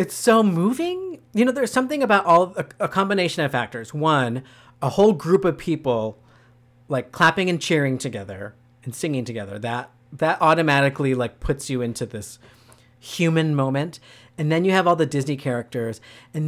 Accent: American